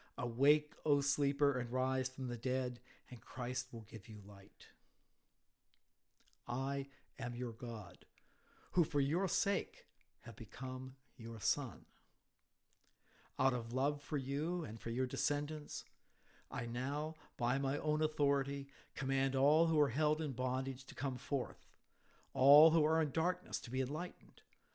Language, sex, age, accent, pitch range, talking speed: English, male, 60-79, American, 125-155 Hz, 145 wpm